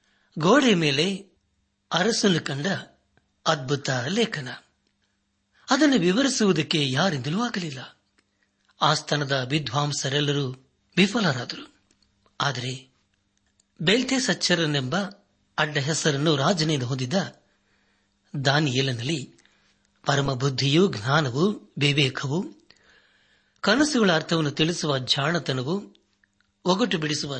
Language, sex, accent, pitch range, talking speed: Kannada, male, native, 135-180 Hz, 70 wpm